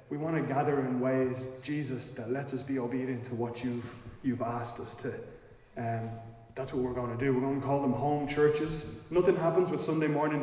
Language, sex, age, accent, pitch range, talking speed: English, male, 20-39, Irish, 130-145 Hz, 225 wpm